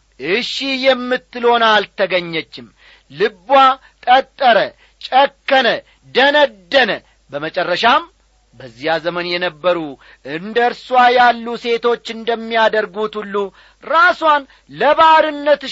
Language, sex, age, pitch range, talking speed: Amharic, male, 40-59, 200-270 Hz, 70 wpm